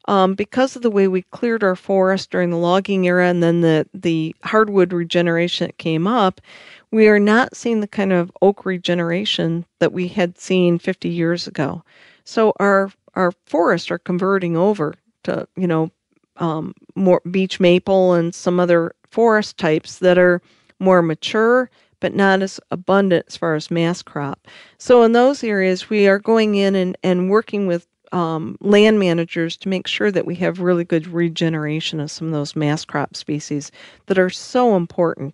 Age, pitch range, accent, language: 40-59, 170-195 Hz, American, English